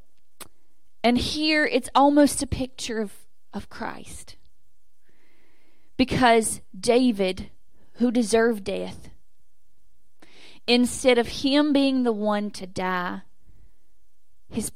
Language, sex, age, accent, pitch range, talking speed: English, female, 30-49, American, 170-235 Hz, 95 wpm